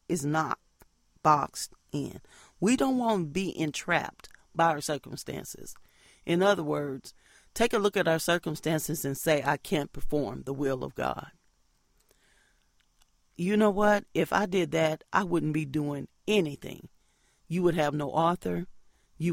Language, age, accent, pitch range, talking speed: English, 40-59, American, 145-205 Hz, 150 wpm